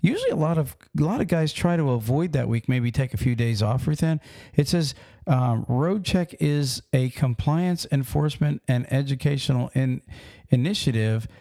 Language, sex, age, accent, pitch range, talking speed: English, male, 50-69, American, 115-145 Hz, 180 wpm